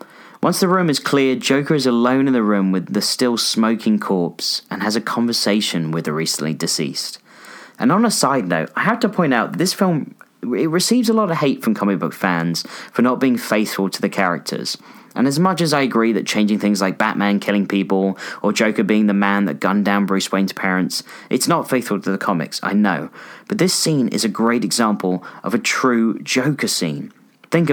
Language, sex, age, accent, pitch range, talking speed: English, male, 30-49, British, 100-150 Hz, 210 wpm